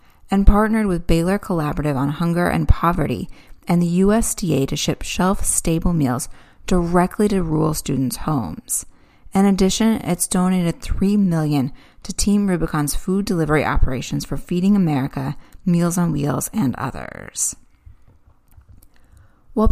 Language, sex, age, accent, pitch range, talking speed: English, female, 30-49, American, 145-195 Hz, 130 wpm